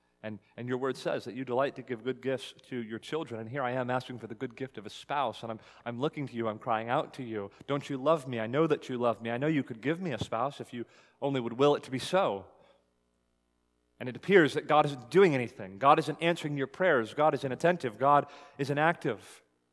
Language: English